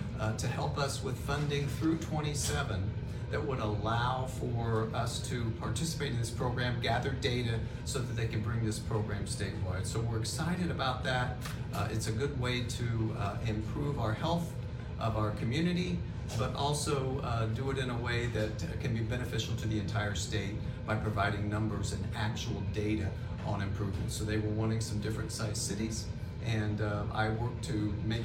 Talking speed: 180 wpm